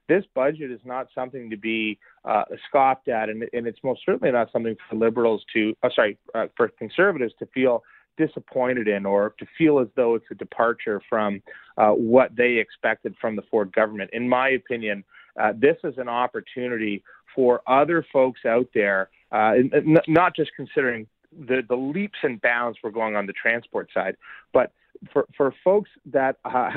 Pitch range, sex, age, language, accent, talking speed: 120-170 Hz, male, 30-49, English, American, 185 wpm